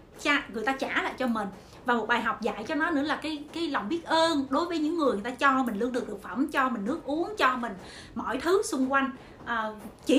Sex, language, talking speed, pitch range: female, Vietnamese, 260 wpm, 235-315 Hz